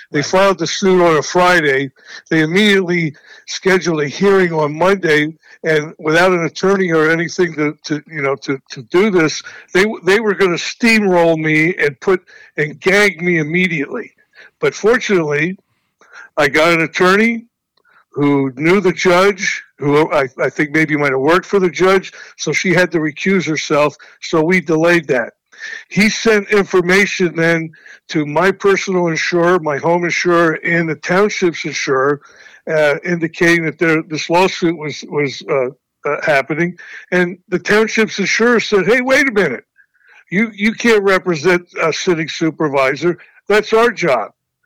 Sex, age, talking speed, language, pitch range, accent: male, 60-79, 155 wpm, English, 160-195 Hz, American